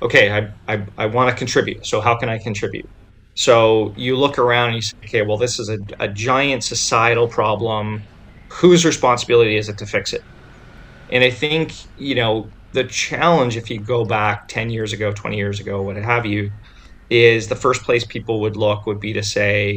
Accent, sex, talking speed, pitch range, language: American, male, 200 wpm, 105-125 Hz, English